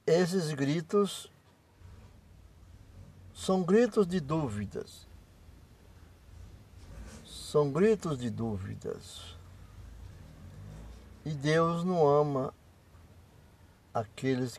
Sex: male